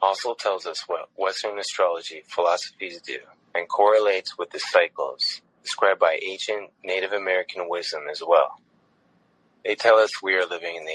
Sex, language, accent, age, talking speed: male, English, American, 20-39, 160 wpm